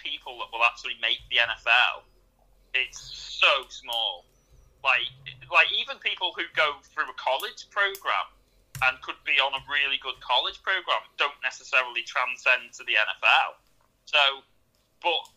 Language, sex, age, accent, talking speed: English, male, 30-49, British, 145 wpm